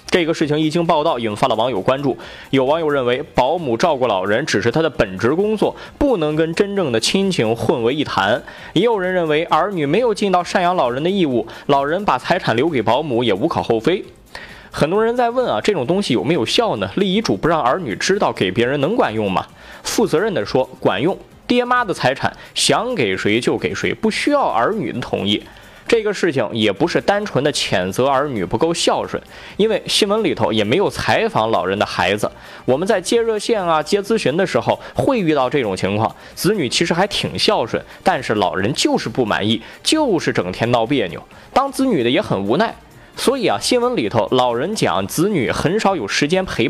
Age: 20-39